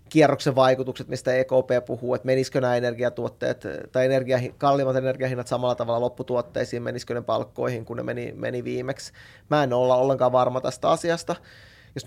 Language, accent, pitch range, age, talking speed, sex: Finnish, native, 125-135 Hz, 20-39, 160 wpm, male